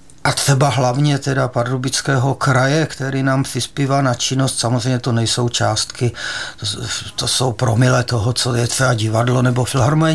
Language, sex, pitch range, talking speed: Czech, male, 130-155 Hz, 155 wpm